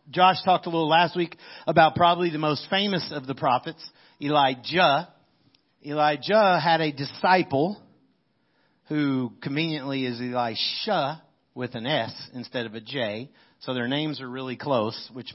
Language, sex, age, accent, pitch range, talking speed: English, male, 50-69, American, 130-170 Hz, 145 wpm